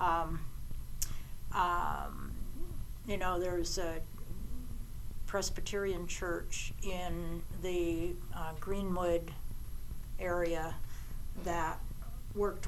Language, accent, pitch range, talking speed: English, American, 120-185 Hz, 70 wpm